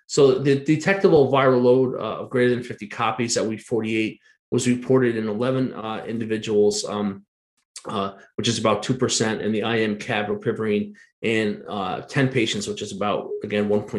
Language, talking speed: English, 165 wpm